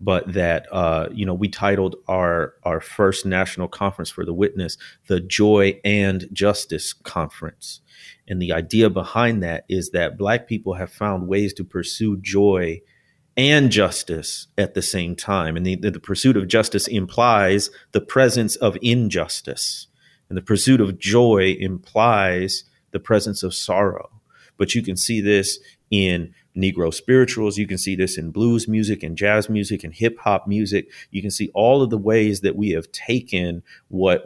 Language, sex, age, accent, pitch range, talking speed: English, male, 30-49, American, 95-110 Hz, 170 wpm